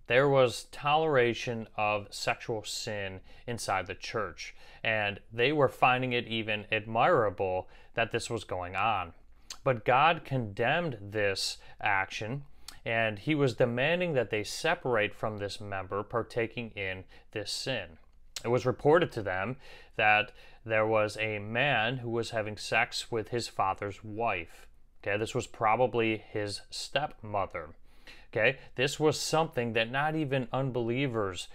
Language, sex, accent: English, male, American